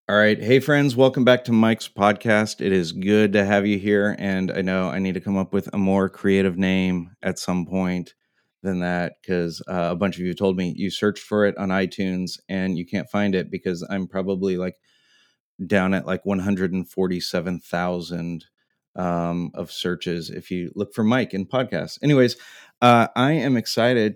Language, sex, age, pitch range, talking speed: English, male, 30-49, 95-105 Hz, 190 wpm